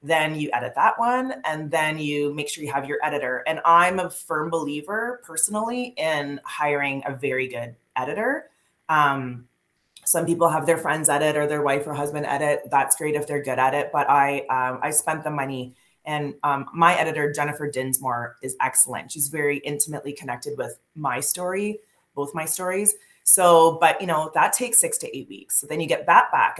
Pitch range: 140-170 Hz